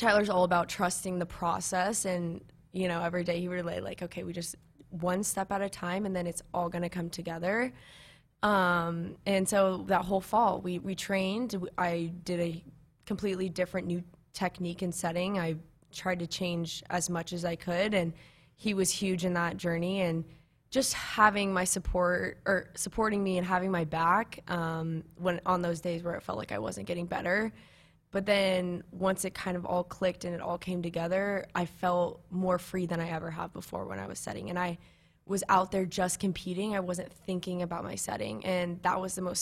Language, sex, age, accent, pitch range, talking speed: English, female, 20-39, American, 170-185 Hz, 200 wpm